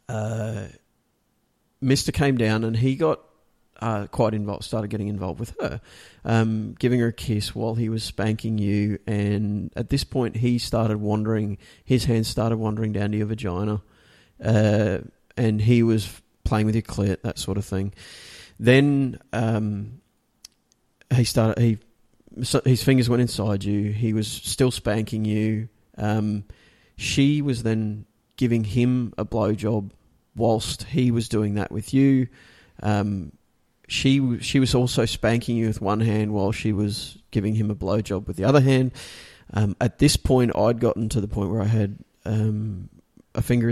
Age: 30-49